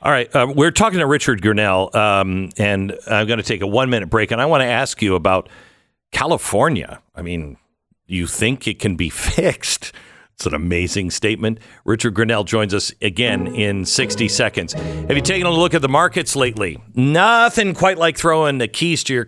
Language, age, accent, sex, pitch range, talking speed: English, 50-69, American, male, 100-135 Hz, 195 wpm